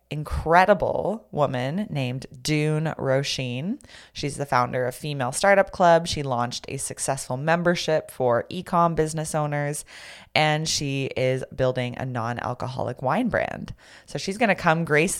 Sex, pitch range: female, 130-170 Hz